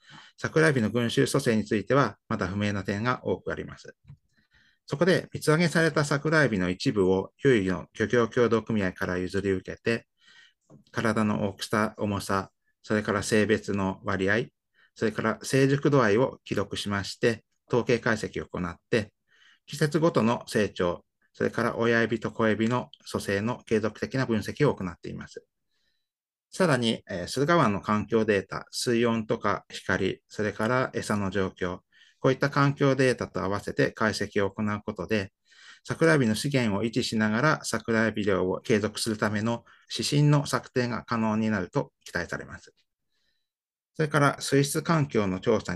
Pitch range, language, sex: 100-125 Hz, Japanese, male